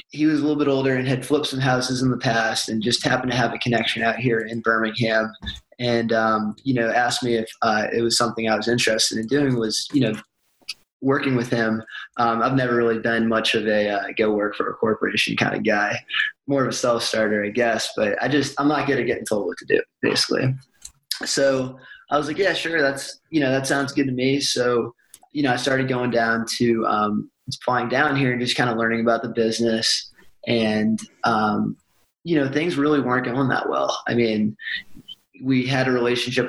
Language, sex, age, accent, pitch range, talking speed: English, male, 20-39, American, 115-130 Hz, 220 wpm